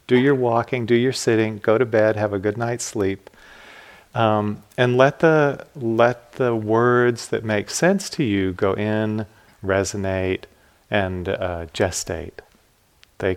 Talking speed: 150 wpm